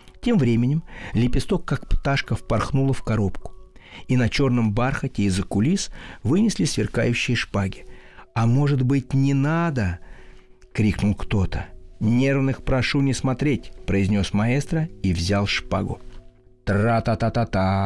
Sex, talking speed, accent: male, 130 wpm, native